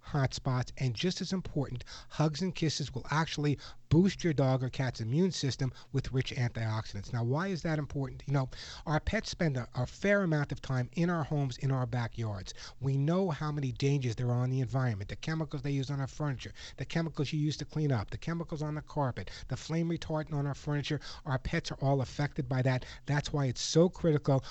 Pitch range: 125-155 Hz